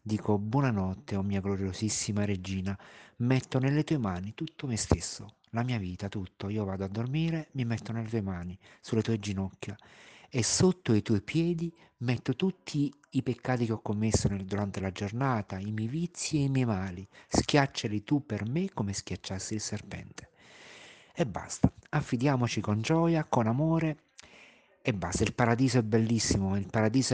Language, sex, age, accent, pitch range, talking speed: Italian, male, 50-69, native, 100-120 Hz, 165 wpm